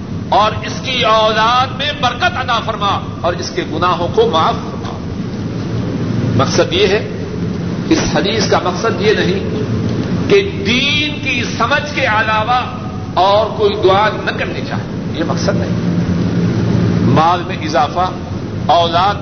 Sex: male